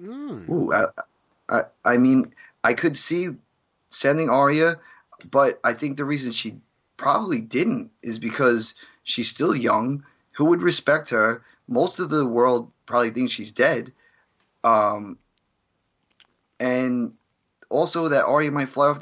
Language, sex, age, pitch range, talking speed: English, male, 20-39, 120-150 Hz, 135 wpm